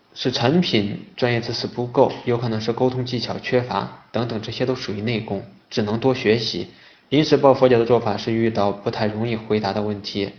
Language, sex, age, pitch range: Chinese, male, 20-39, 105-120 Hz